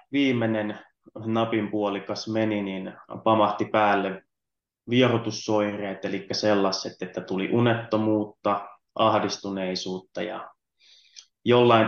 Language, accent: Finnish, native